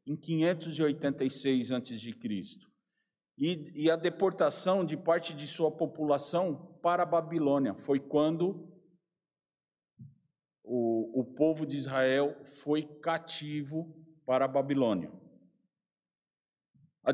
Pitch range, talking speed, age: 115-165 Hz, 100 wpm, 50-69